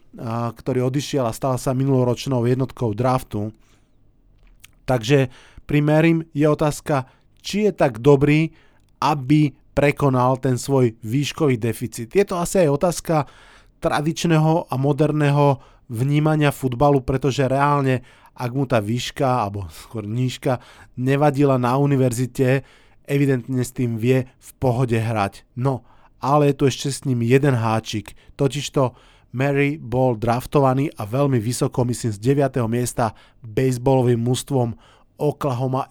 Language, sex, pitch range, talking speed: Slovak, male, 120-145 Hz, 125 wpm